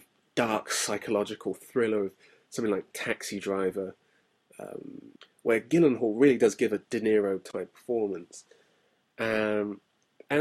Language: English